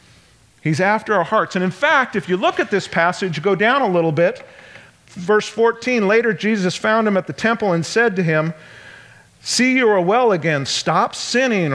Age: 40-59